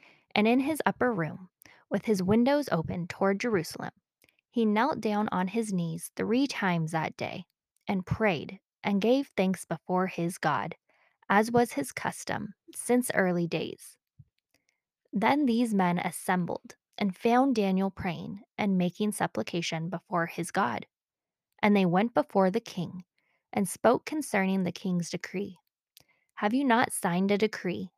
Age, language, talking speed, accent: 10-29, English, 145 wpm, American